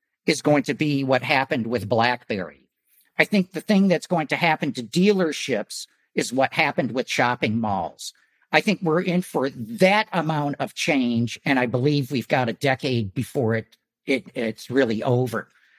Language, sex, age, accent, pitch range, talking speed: English, male, 50-69, American, 130-195 Hz, 175 wpm